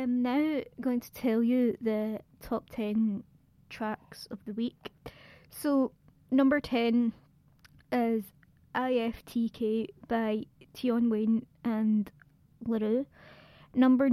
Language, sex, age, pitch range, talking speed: English, female, 20-39, 220-245 Hz, 105 wpm